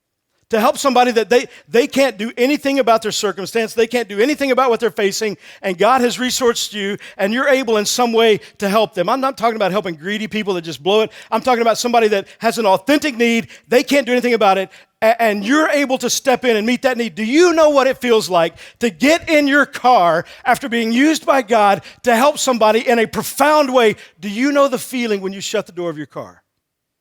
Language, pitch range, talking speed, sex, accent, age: English, 210-265 Hz, 240 wpm, male, American, 50-69